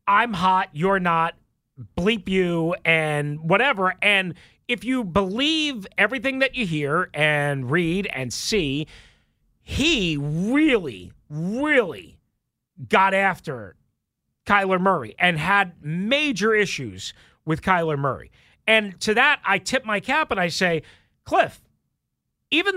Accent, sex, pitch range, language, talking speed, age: American, male, 180-245 Hz, English, 120 wpm, 40-59